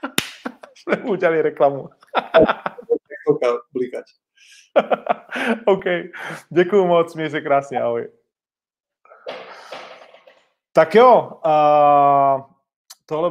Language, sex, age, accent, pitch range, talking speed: Czech, male, 30-49, native, 120-160 Hz, 70 wpm